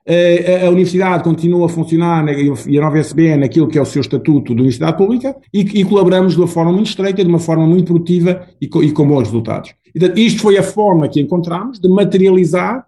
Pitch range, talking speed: 125-170 Hz, 225 wpm